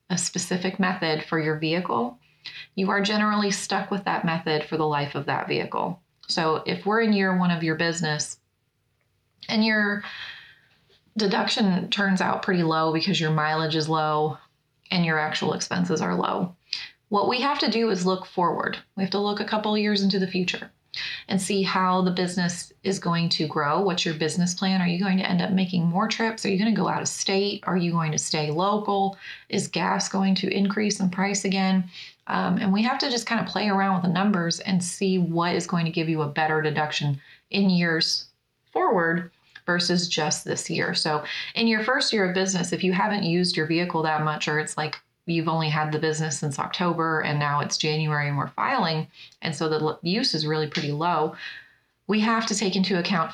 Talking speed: 210 wpm